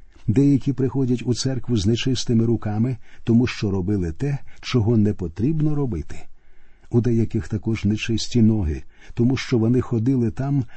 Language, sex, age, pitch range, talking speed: Ukrainian, male, 50-69, 105-130 Hz, 140 wpm